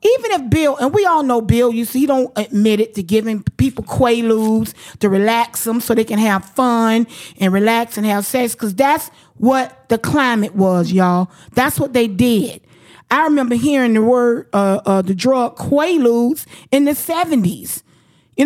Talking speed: 180 wpm